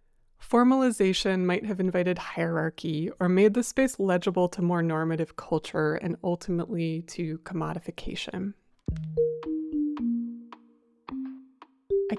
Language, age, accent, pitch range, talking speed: English, 20-39, American, 160-215 Hz, 95 wpm